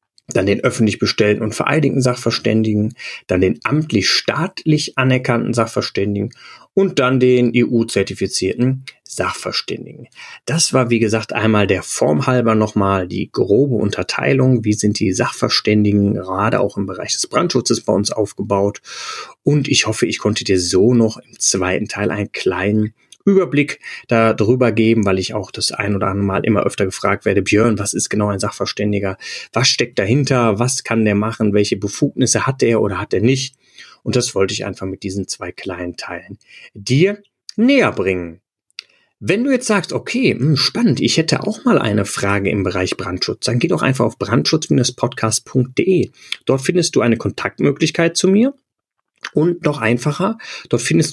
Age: 30-49